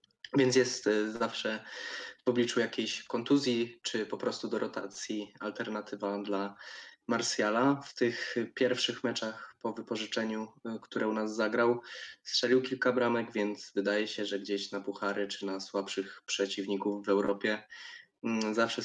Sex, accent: male, native